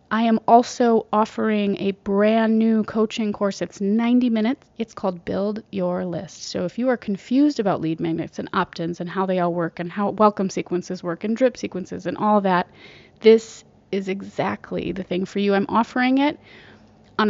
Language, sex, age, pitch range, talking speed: English, female, 30-49, 190-225 Hz, 185 wpm